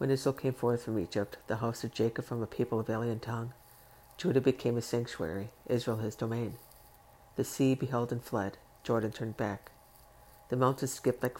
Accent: American